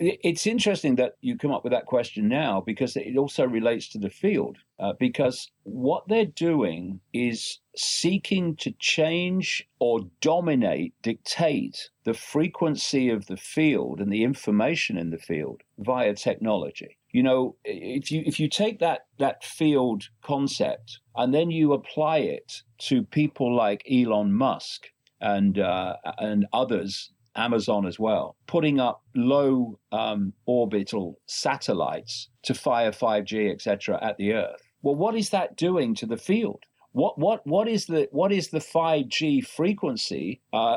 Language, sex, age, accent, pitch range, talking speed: English, male, 50-69, British, 115-185 Hz, 150 wpm